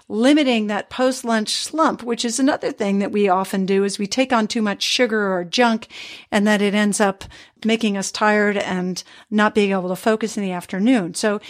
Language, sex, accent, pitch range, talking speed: English, female, American, 200-245 Hz, 205 wpm